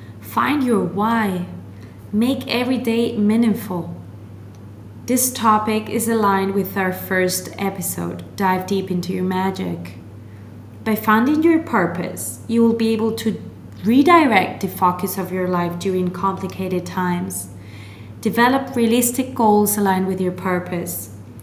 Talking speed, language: 125 wpm, English